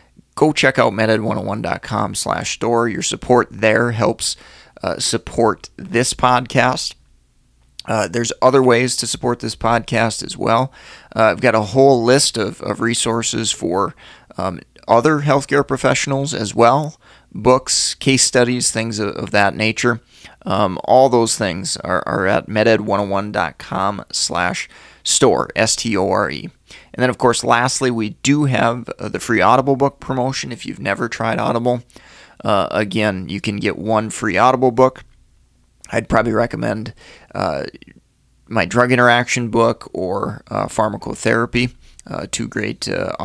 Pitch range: 110-130 Hz